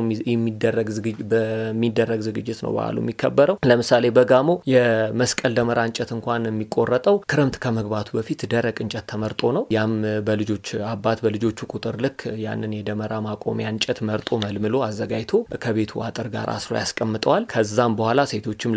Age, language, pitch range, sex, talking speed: 30-49, Amharic, 110-120 Hz, male, 130 wpm